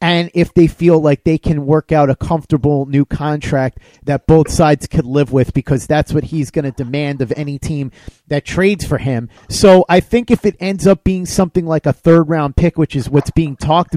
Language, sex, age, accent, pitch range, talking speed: English, male, 30-49, American, 145-180 Hz, 225 wpm